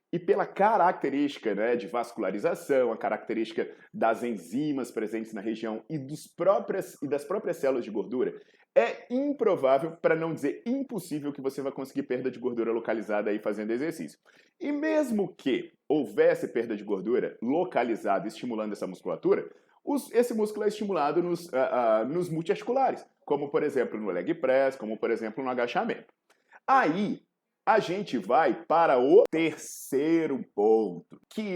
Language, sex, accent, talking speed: Portuguese, male, Brazilian, 150 wpm